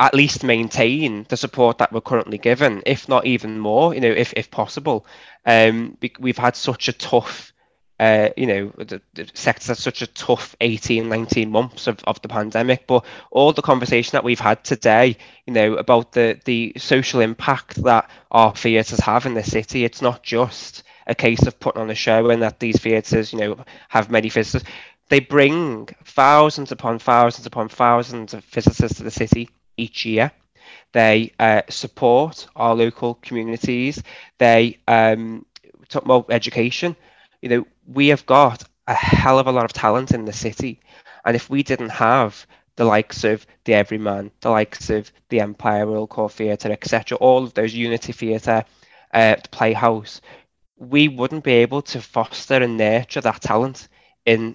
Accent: British